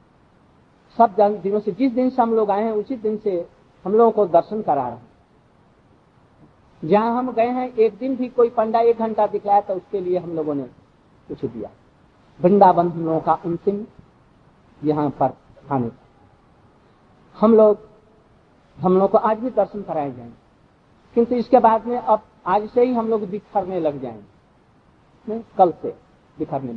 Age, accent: 50-69, native